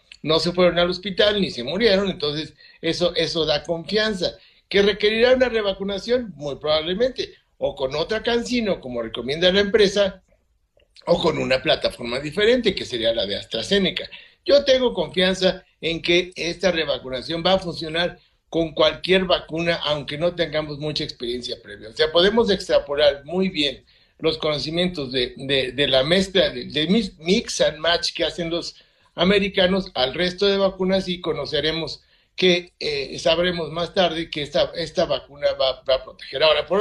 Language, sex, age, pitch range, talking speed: Spanish, male, 60-79, 155-200 Hz, 160 wpm